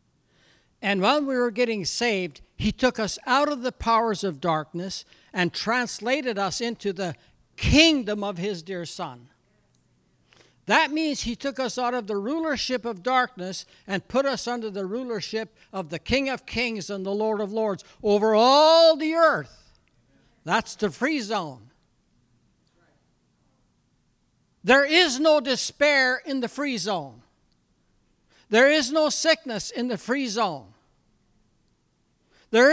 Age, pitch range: 60-79, 190-270 Hz